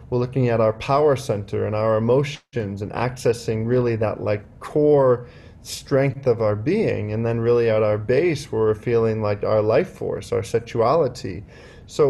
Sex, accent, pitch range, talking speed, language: male, American, 110-125 Hz, 175 wpm, English